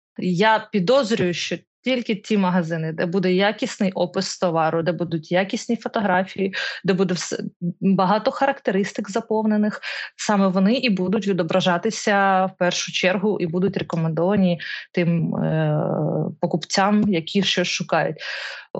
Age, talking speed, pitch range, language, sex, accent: 20-39, 120 wpm, 180-210 Hz, Ukrainian, female, native